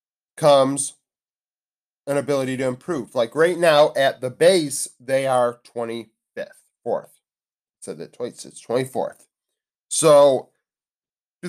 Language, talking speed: English, 115 wpm